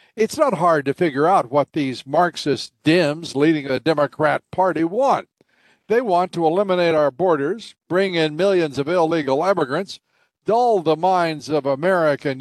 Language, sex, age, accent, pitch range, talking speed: English, male, 60-79, American, 145-185 Hz, 155 wpm